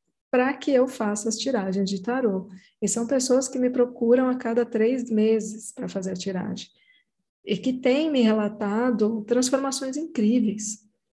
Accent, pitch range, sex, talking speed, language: Brazilian, 195-250 Hz, female, 155 wpm, Portuguese